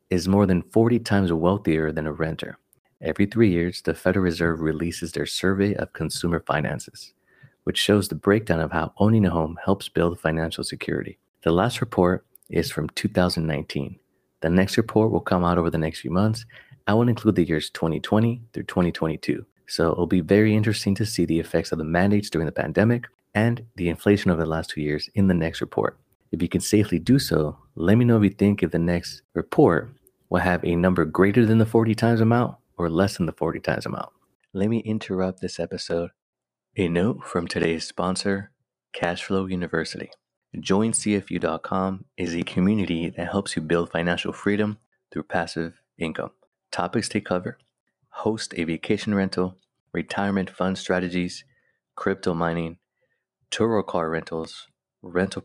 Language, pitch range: English, 85-105 Hz